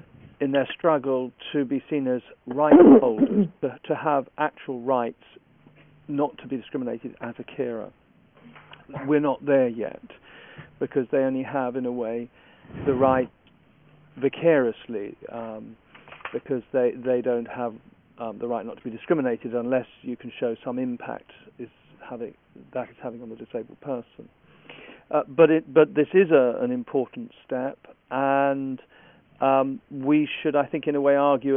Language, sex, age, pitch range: English, male, 50-69, 125-145 Hz